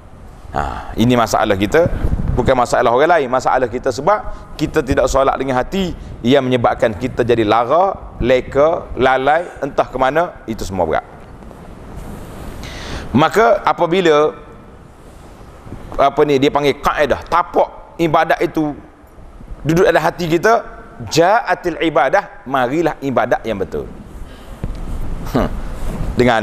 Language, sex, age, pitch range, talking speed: Malay, male, 30-49, 130-200 Hz, 115 wpm